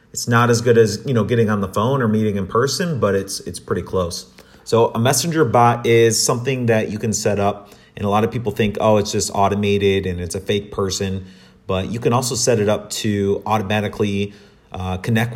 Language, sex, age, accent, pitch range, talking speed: English, male, 30-49, American, 95-115 Hz, 225 wpm